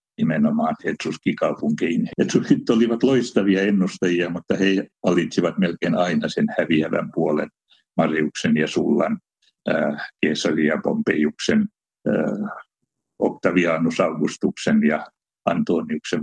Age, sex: 60-79, male